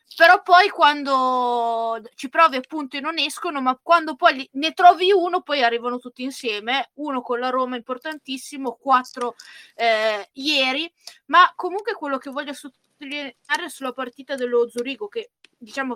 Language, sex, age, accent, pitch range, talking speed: Italian, female, 20-39, native, 235-295 Hz, 145 wpm